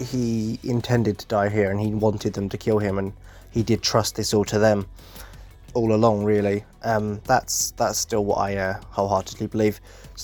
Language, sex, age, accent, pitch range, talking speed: English, male, 20-39, British, 105-130 Hz, 195 wpm